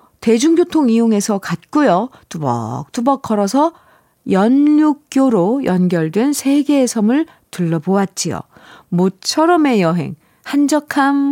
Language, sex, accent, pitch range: Korean, female, native, 170-245 Hz